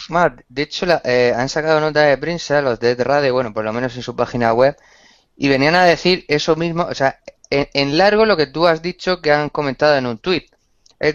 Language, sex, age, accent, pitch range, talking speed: Spanish, male, 20-39, Spanish, 120-160 Hz, 235 wpm